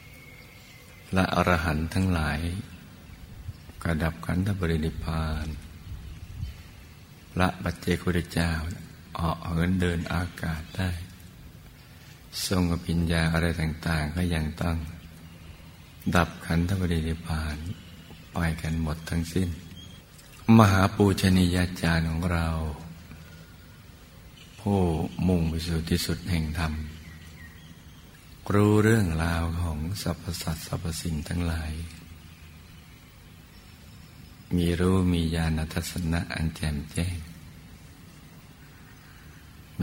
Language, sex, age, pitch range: Thai, male, 60-79, 80-90 Hz